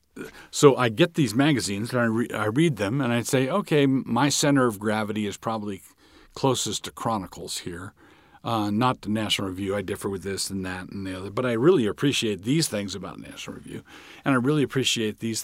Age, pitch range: 50-69, 95-125 Hz